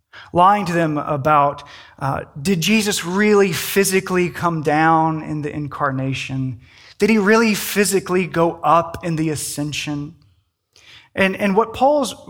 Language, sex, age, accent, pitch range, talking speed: English, male, 20-39, American, 145-200 Hz, 130 wpm